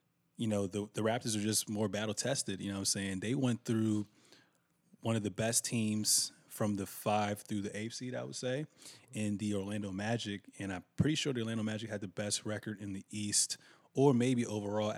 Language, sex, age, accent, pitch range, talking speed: English, male, 20-39, American, 105-120 Hz, 210 wpm